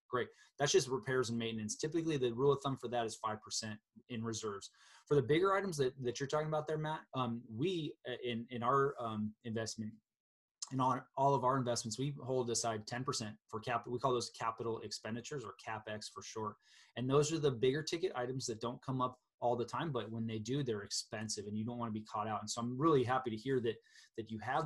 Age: 20-39